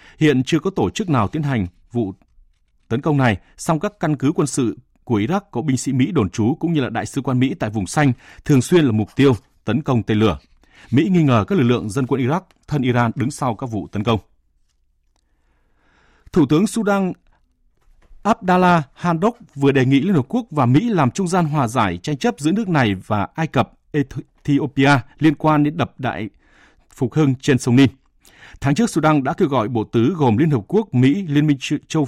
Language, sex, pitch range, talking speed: Vietnamese, male, 110-150 Hz, 215 wpm